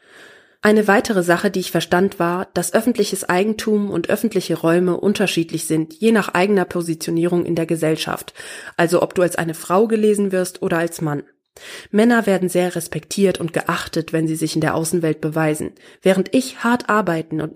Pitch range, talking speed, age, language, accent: 170-205 Hz, 175 wpm, 20-39, German, German